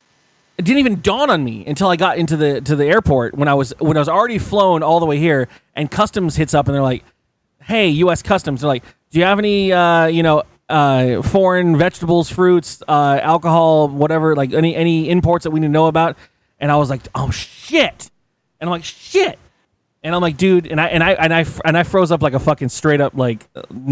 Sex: male